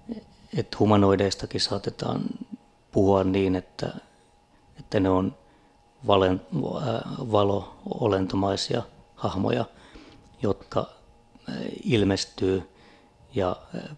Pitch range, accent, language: 95-115 Hz, native, Finnish